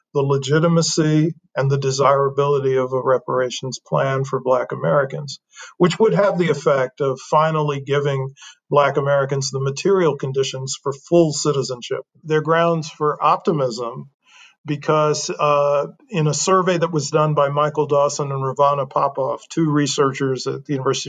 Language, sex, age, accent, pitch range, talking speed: English, male, 50-69, American, 135-160 Hz, 150 wpm